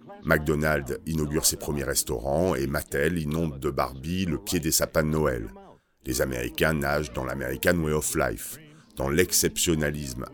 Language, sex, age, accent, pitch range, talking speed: French, male, 50-69, French, 75-90 Hz, 150 wpm